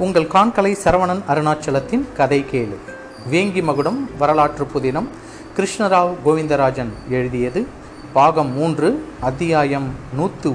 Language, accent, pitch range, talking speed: Tamil, native, 130-175 Hz, 95 wpm